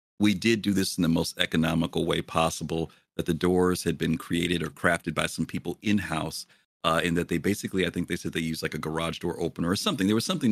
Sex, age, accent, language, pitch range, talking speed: male, 40-59, American, English, 85-105 Hz, 240 wpm